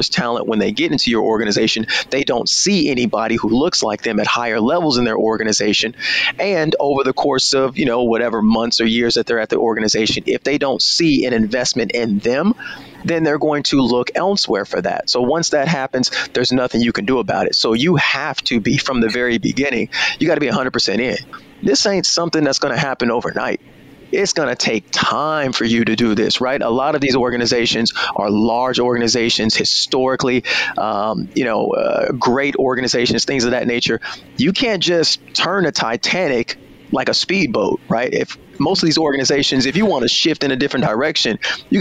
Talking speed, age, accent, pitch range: 200 wpm, 30-49, American, 115-160 Hz